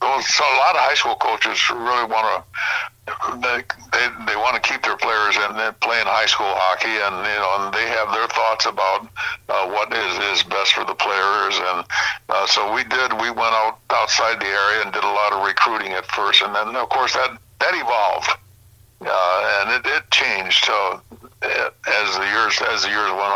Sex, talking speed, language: male, 205 wpm, English